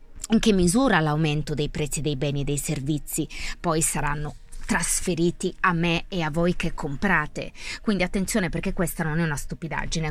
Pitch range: 155-210 Hz